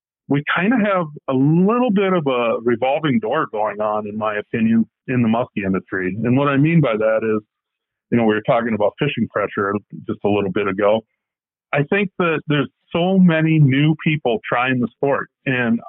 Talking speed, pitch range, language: 195 wpm, 115-145 Hz, English